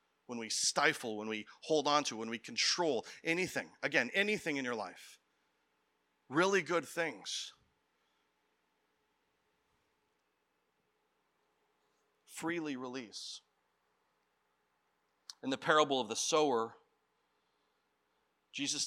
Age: 40-59